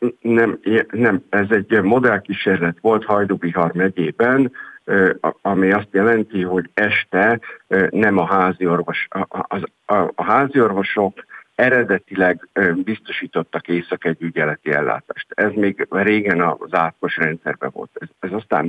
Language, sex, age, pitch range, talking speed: Hungarian, male, 50-69, 85-110 Hz, 110 wpm